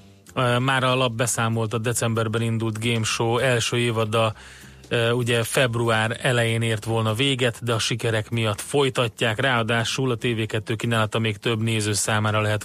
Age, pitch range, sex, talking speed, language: 30-49, 110-130 Hz, male, 145 wpm, Hungarian